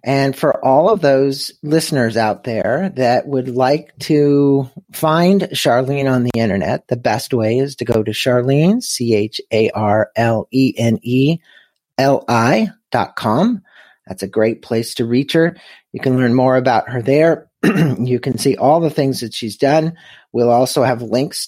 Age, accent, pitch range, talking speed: 40-59, American, 125-170 Hz, 150 wpm